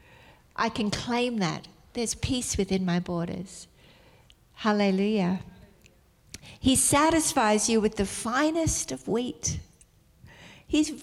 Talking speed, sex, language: 105 wpm, female, English